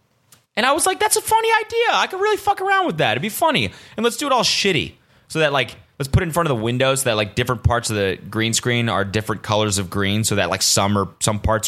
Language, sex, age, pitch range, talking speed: English, male, 20-39, 100-135 Hz, 290 wpm